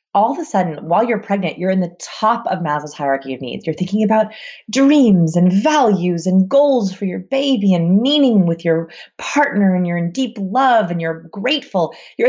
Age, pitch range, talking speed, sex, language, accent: 30-49, 155-215 Hz, 200 wpm, female, English, American